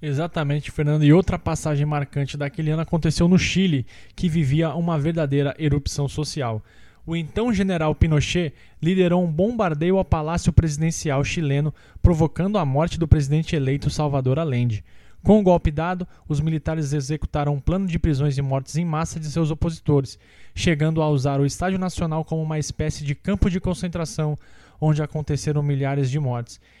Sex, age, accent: male, 20-39, Brazilian